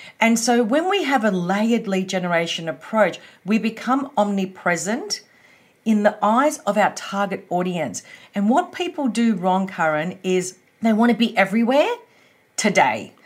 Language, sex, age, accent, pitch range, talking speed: English, female, 40-59, Australian, 195-245 Hz, 150 wpm